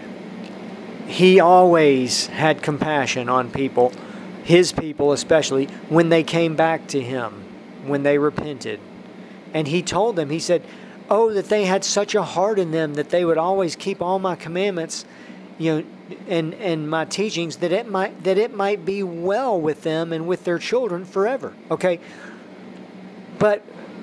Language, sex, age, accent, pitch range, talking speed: English, male, 40-59, American, 145-195 Hz, 160 wpm